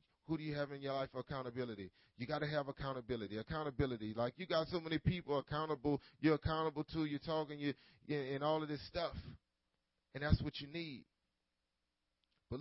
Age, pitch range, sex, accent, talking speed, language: 30-49, 115-160 Hz, male, American, 180 wpm, English